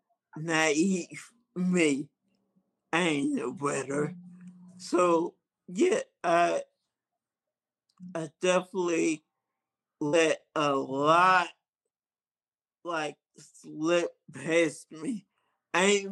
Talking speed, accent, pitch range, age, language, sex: 75 wpm, American, 155-195 Hz, 50-69, English, male